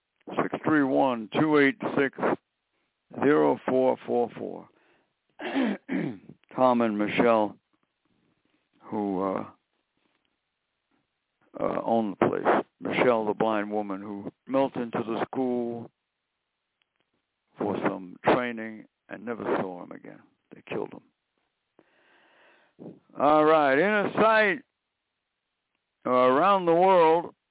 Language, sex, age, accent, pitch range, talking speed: English, male, 60-79, American, 115-160 Hz, 85 wpm